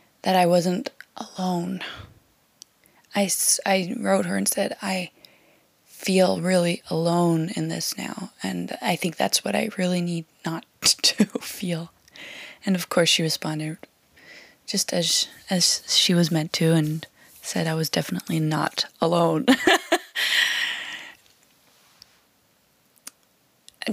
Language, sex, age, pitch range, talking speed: English, female, 20-39, 160-190 Hz, 120 wpm